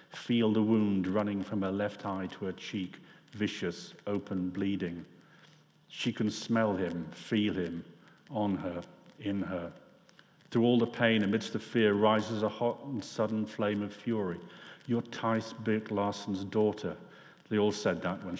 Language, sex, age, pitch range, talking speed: English, male, 40-59, 95-110 Hz, 165 wpm